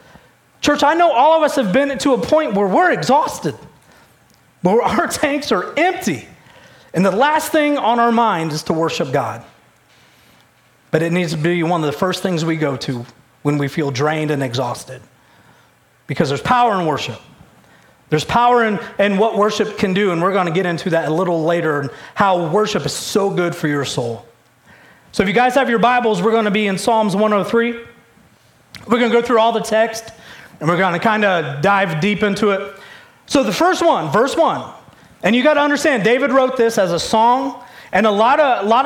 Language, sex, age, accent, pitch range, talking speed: English, male, 30-49, American, 175-240 Hz, 210 wpm